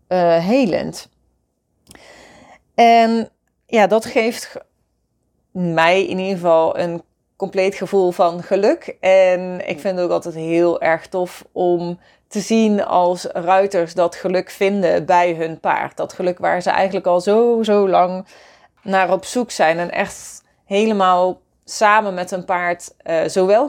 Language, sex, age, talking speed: Dutch, female, 30-49, 145 wpm